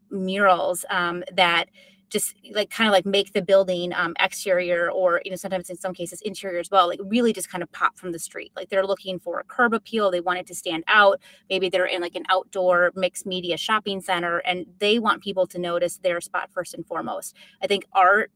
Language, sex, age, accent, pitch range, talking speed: English, female, 30-49, American, 180-200 Hz, 225 wpm